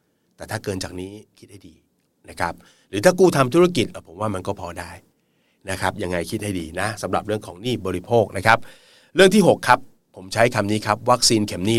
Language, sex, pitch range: Thai, male, 95-135 Hz